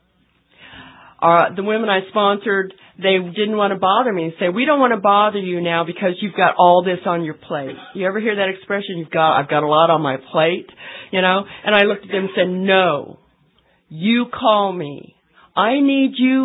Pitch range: 165-200 Hz